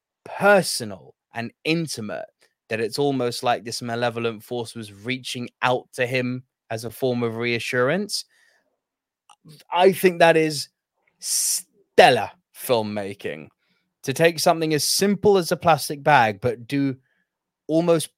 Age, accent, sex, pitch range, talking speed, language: 20-39, British, male, 115-145 Hz, 125 wpm, English